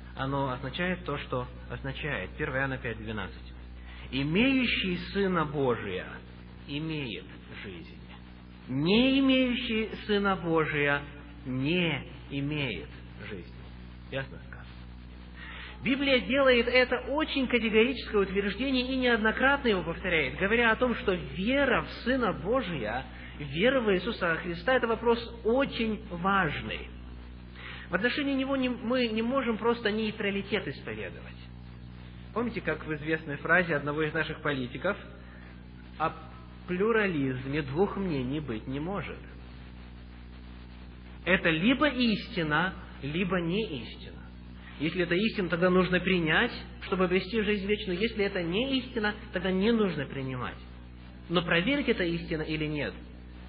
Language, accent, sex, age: Russian, native, male, 20-39